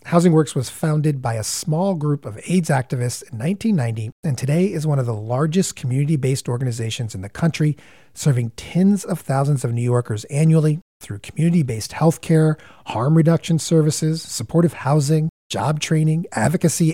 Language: English